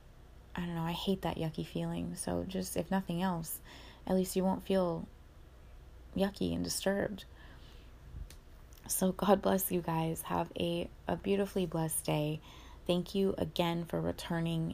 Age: 20-39